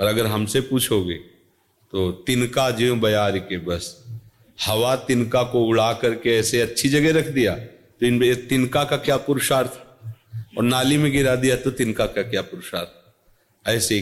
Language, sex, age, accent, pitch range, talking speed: Hindi, male, 40-59, native, 95-120 Hz, 145 wpm